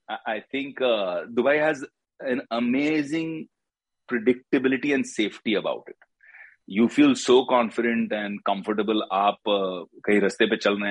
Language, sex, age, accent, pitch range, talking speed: Hindi, male, 30-49, native, 110-135 Hz, 140 wpm